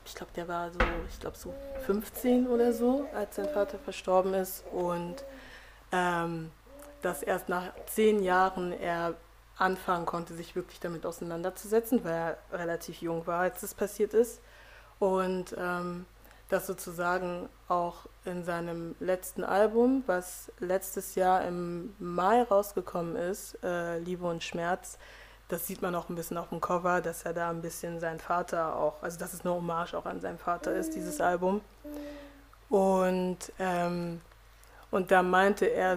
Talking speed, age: 155 wpm, 20-39